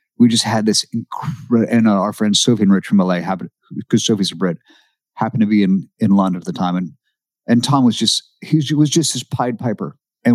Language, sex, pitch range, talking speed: English, male, 100-130 Hz, 240 wpm